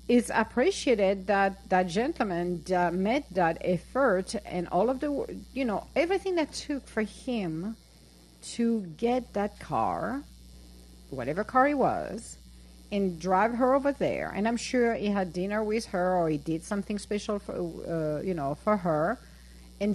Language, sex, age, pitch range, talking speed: English, female, 50-69, 160-230 Hz, 160 wpm